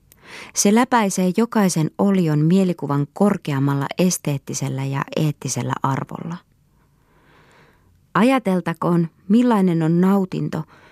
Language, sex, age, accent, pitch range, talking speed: Finnish, female, 20-39, native, 150-195 Hz, 75 wpm